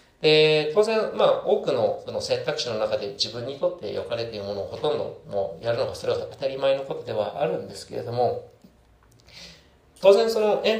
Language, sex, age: Japanese, male, 40-59